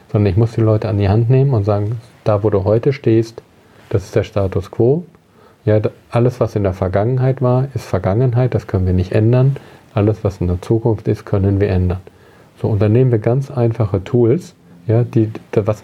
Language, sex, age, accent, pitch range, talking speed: German, male, 40-59, German, 100-120 Hz, 195 wpm